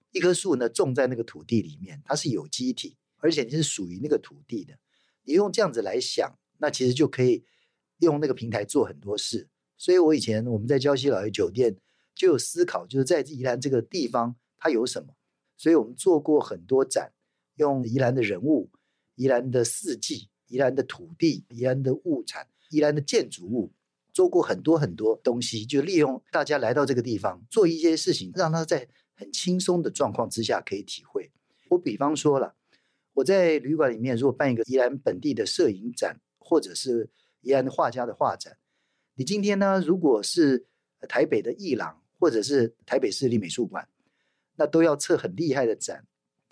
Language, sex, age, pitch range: Chinese, male, 50-69, 125-190 Hz